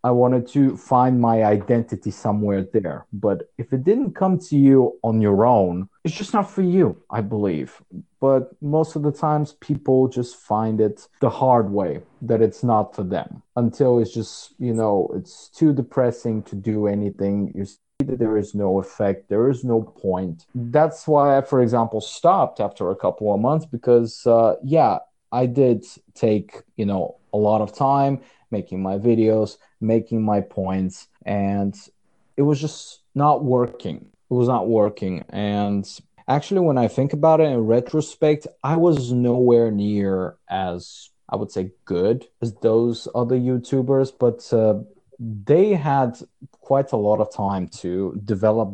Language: English